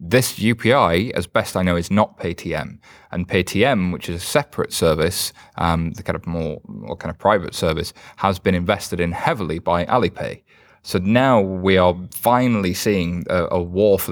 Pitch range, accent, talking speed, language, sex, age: 85-100 Hz, British, 185 wpm, English, male, 20-39